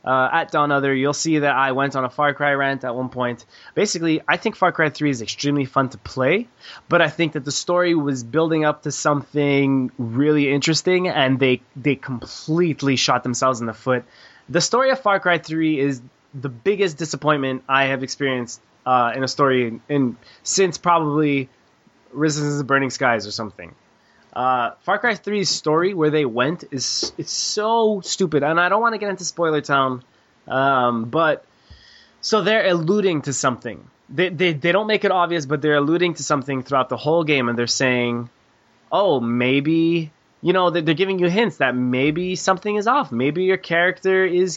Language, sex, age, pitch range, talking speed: English, male, 20-39, 130-170 Hz, 195 wpm